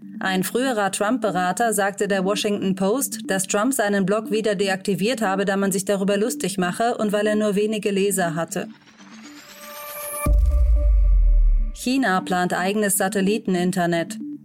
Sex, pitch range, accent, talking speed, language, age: female, 185-220 Hz, German, 130 wpm, German, 30-49